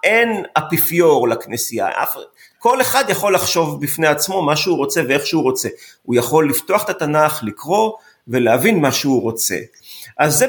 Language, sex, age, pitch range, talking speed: Hebrew, male, 40-59, 145-200 Hz, 155 wpm